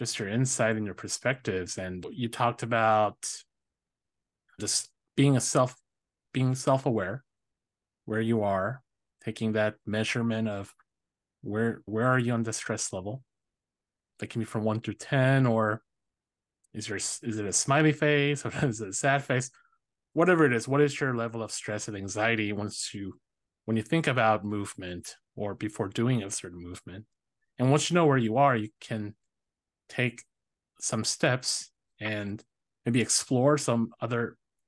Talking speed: 160 wpm